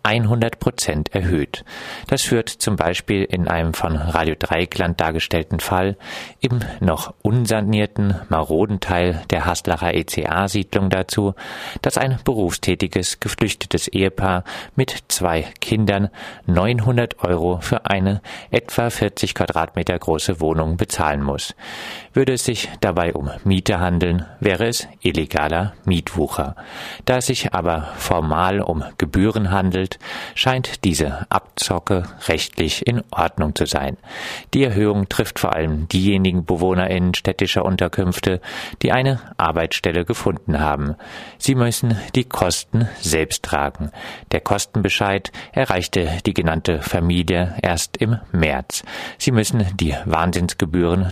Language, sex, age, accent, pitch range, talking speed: German, male, 40-59, German, 85-105 Hz, 120 wpm